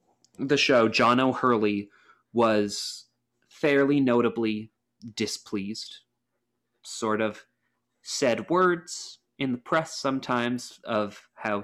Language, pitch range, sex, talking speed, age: English, 105-120 Hz, male, 95 wpm, 30-49